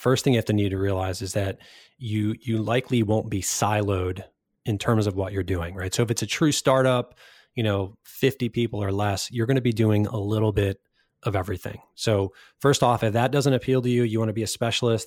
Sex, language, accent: male, English, American